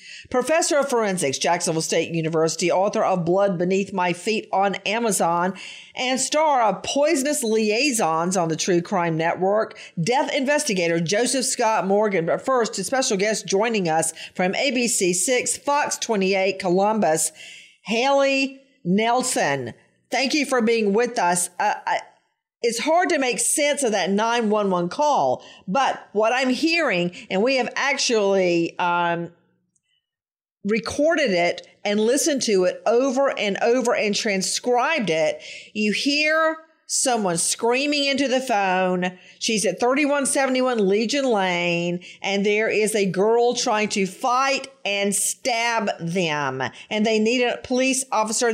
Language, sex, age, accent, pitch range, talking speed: English, female, 50-69, American, 190-260 Hz, 135 wpm